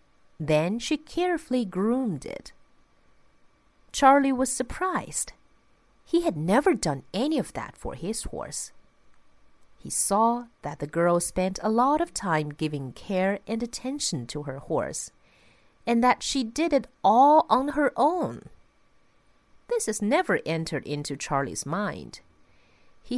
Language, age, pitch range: Chinese, 40-59, 165-270 Hz